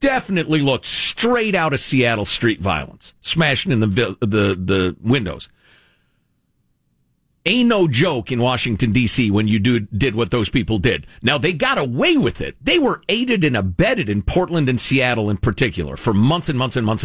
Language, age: English, 50-69